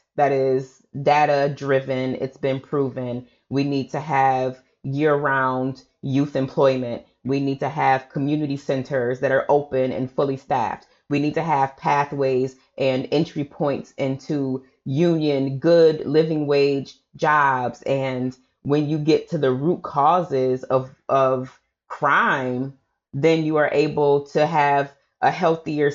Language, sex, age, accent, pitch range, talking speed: English, female, 30-49, American, 135-160 Hz, 140 wpm